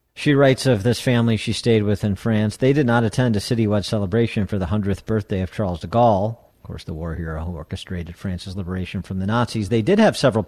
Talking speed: 235 wpm